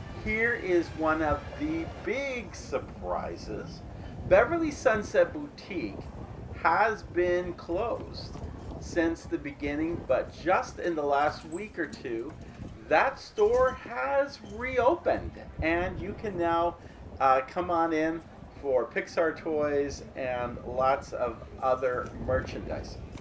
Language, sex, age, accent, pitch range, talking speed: English, male, 40-59, American, 120-170 Hz, 115 wpm